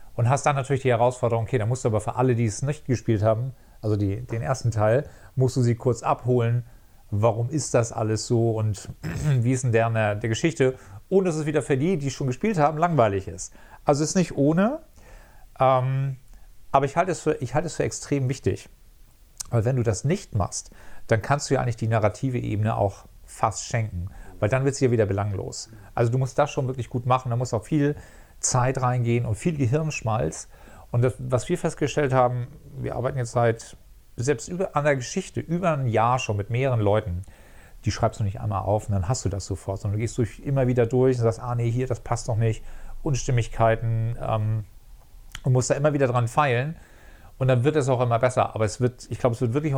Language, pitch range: German, 110-135 Hz